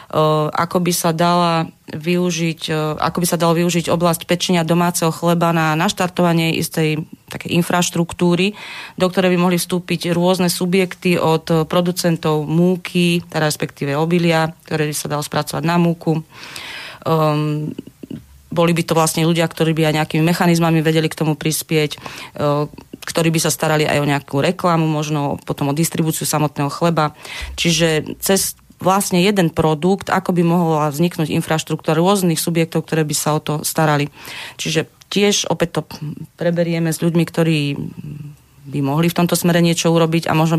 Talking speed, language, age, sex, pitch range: 145 wpm, Slovak, 30-49, female, 150-170 Hz